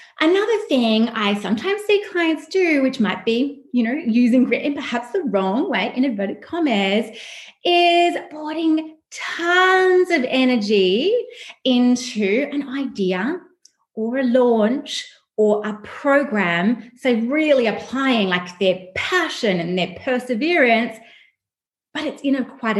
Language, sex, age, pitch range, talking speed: English, female, 30-49, 205-310 Hz, 130 wpm